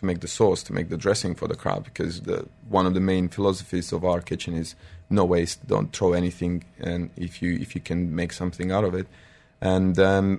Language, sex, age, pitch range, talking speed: English, male, 20-39, 85-95 Hz, 230 wpm